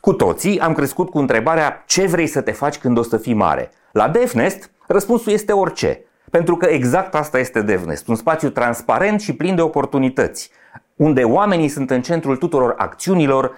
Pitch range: 120-180 Hz